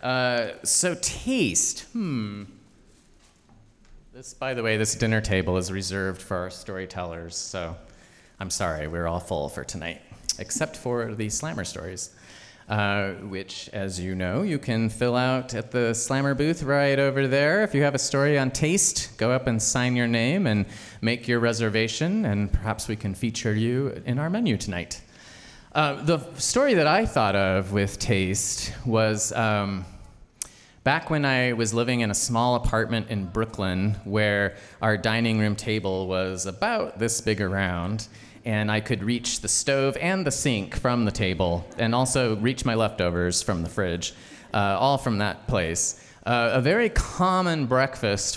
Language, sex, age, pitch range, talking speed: English, male, 30-49, 100-130 Hz, 165 wpm